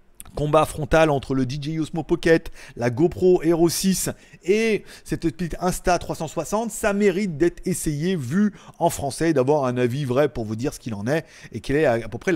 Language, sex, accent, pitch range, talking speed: French, male, French, 135-195 Hz, 190 wpm